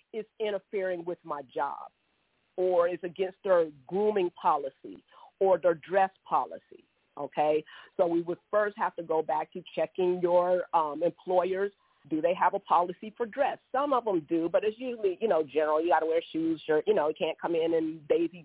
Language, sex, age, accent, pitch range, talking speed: English, female, 40-59, American, 165-200 Hz, 195 wpm